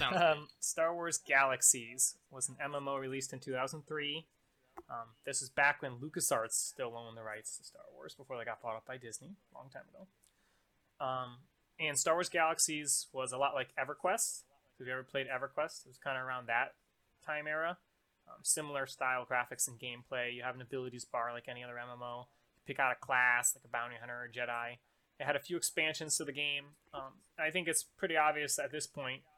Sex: male